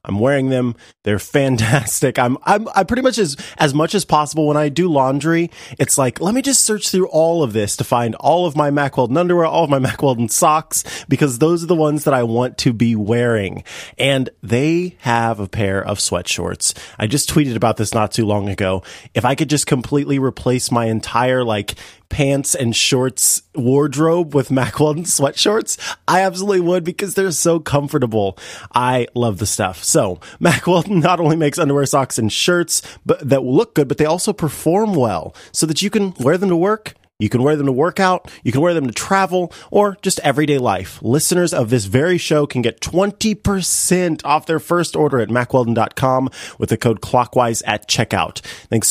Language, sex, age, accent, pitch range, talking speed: English, male, 30-49, American, 115-160 Hz, 200 wpm